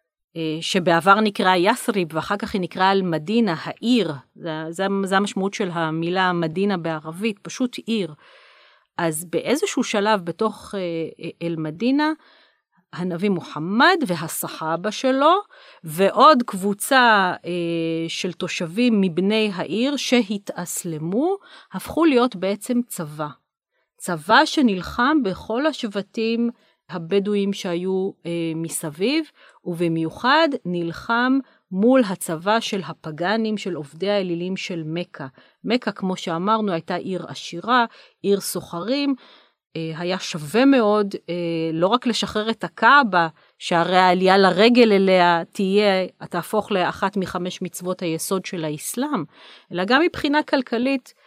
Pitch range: 170-230 Hz